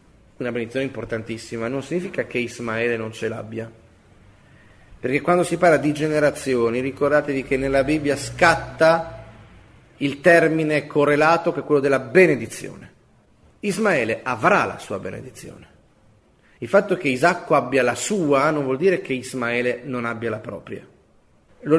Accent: native